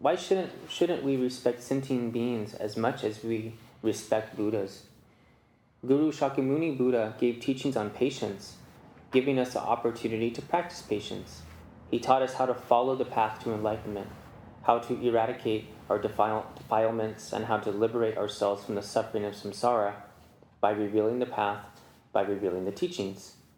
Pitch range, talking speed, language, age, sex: 110-140 Hz, 155 wpm, English, 20-39, male